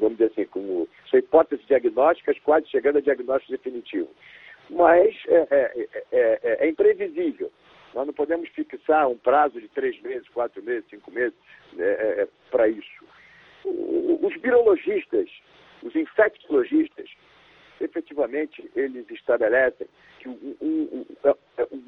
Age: 60-79